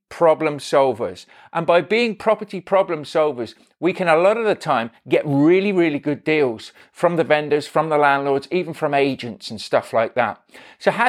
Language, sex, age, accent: English, male, 40-59, British